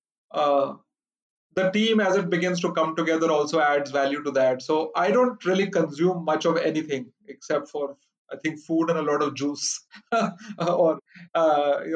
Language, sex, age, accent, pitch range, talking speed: English, male, 30-49, Indian, 140-165 Hz, 175 wpm